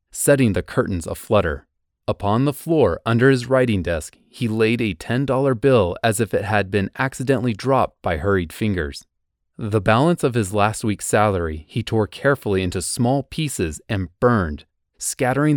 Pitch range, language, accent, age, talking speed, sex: 95-125 Hz, English, American, 30-49, 160 wpm, male